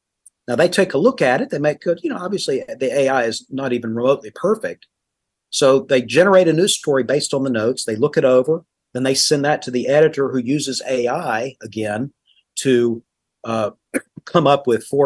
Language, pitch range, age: English, 125-155 Hz, 40-59